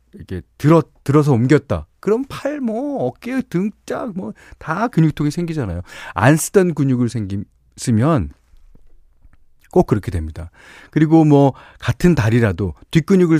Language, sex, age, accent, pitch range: Korean, male, 40-59, native, 95-150 Hz